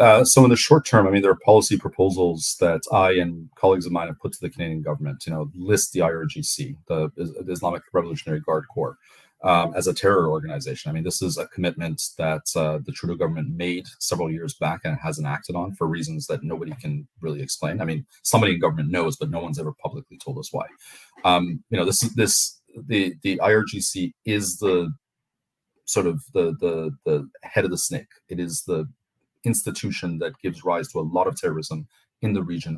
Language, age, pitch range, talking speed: English, 30-49, 80-115 Hz, 210 wpm